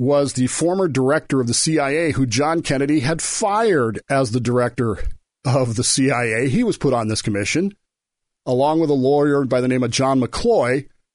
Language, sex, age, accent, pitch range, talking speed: English, male, 40-59, American, 130-165 Hz, 185 wpm